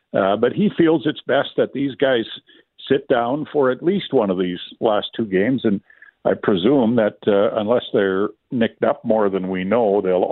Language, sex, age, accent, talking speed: English, male, 50-69, American, 200 wpm